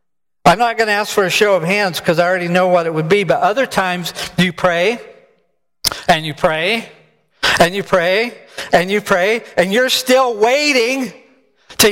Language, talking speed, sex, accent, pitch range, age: English, 185 wpm, male, American, 175-220 Hz, 50-69